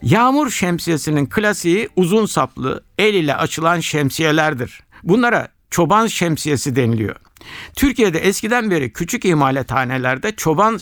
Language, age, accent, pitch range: Turkish, 60-79, native, 140-210 Hz